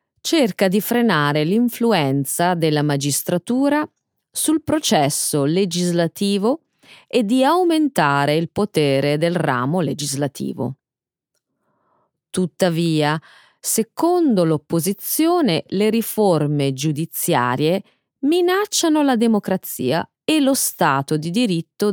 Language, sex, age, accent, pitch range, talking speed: Italian, female, 30-49, native, 155-240 Hz, 85 wpm